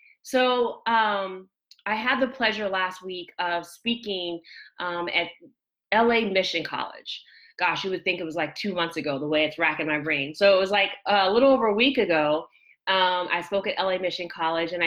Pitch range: 170-220 Hz